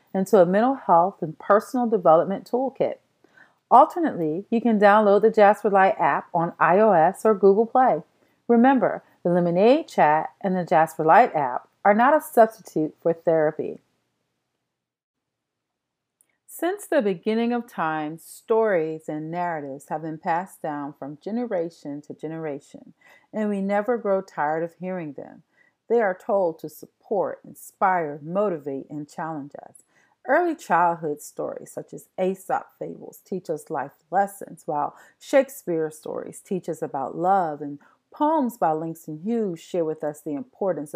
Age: 40-59